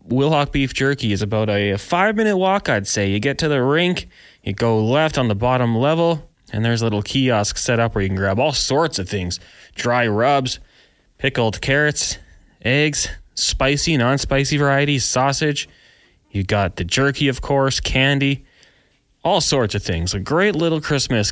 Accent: American